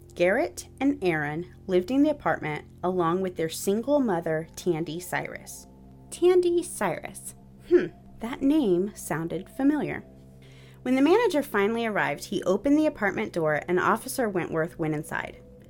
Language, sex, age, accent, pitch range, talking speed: English, female, 30-49, American, 160-205 Hz, 140 wpm